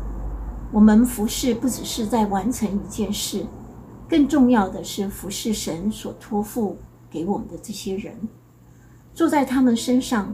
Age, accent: 60-79, American